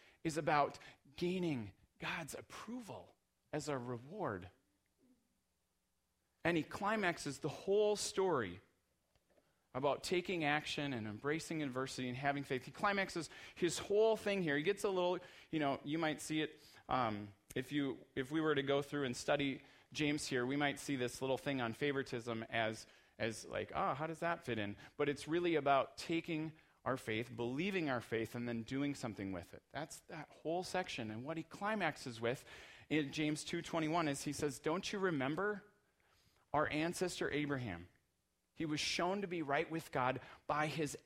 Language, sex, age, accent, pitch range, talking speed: English, male, 30-49, American, 120-160 Hz, 170 wpm